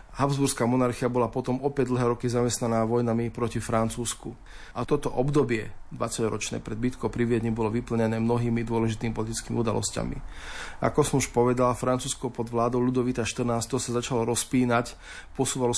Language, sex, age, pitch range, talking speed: Slovak, male, 40-59, 120-130 Hz, 140 wpm